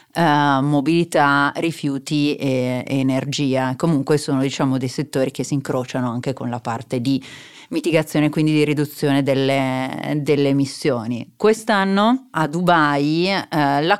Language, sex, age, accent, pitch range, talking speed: Italian, female, 30-49, native, 135-160 Hz, 135 wpm